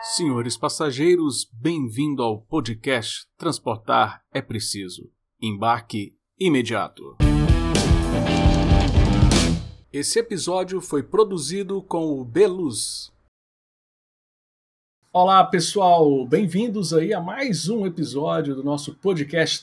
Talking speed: 85 wpm